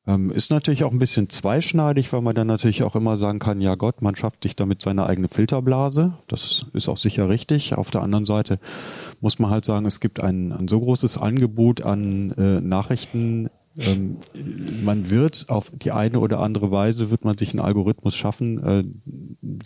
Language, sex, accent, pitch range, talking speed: German, male, German, 100-125 Hz, 190 wpm